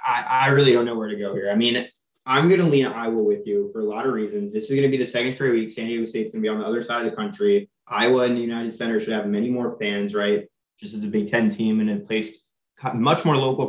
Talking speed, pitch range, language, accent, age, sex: 300 wpm, 115-145 Hz, English, American, 20-39, male